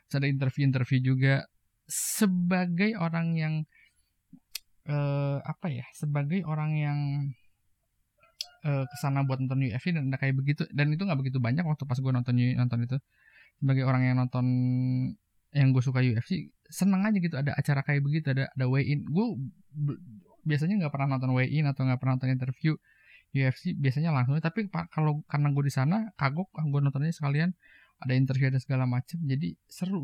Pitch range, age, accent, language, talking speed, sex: 135-155 Hz, 20-39, native, Indonesian, 165 wpm, male